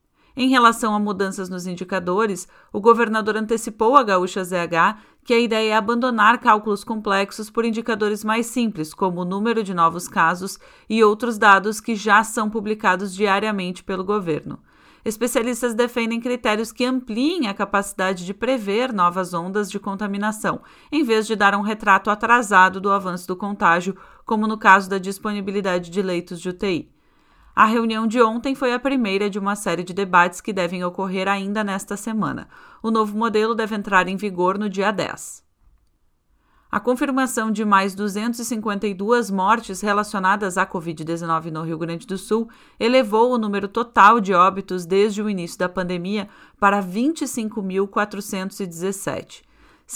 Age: 30-49